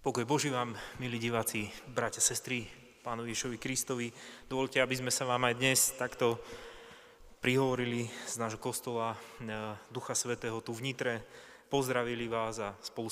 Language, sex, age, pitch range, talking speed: Slovak, male, 20-39, 115-135 Hz, 140 wpm